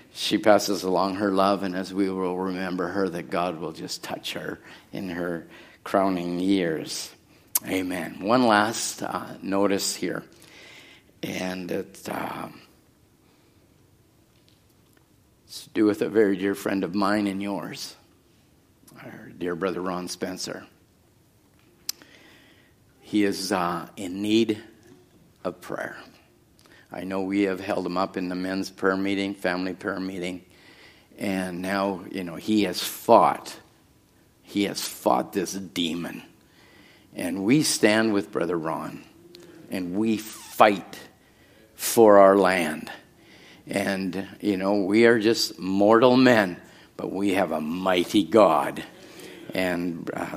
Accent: American